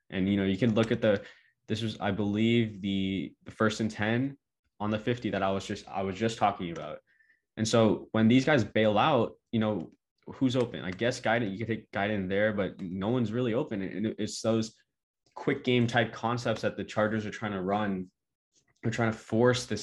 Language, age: English, 20-39